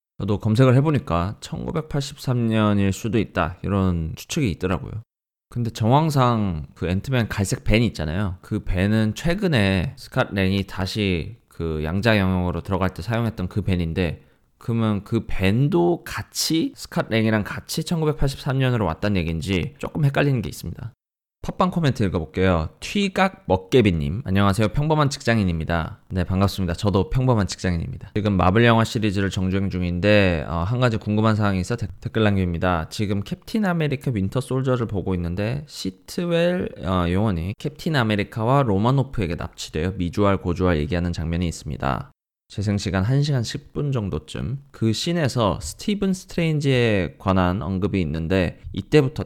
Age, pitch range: 20-39, 90-125 Hz